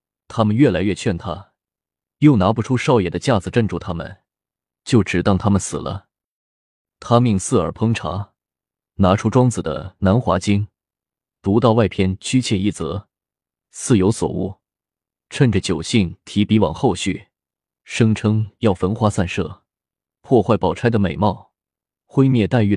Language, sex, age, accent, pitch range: Chinese, male, 20-39, native, 90-115 Hz